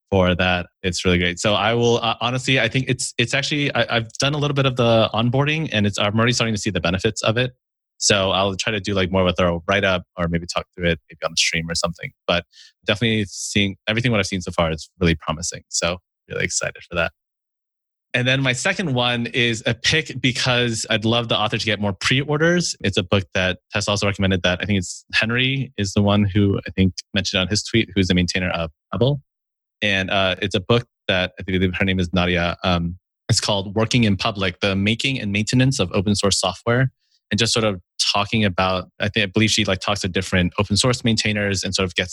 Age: 20-39